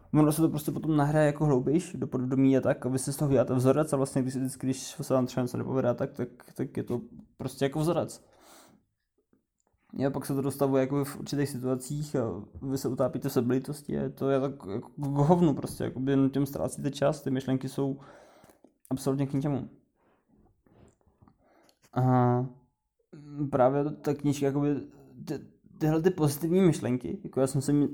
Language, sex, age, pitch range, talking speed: Czech, male, 20-39, 130-150 Hz, 185 wpm